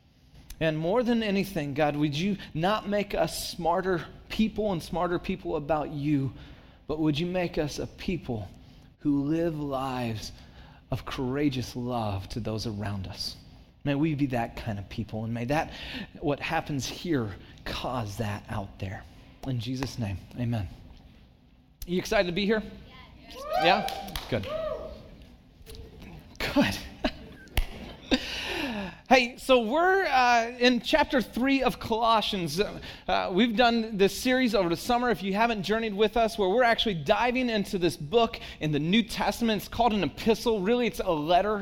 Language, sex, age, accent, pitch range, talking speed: English, male, 30-49, American, 140-225 Hz, 155 wpm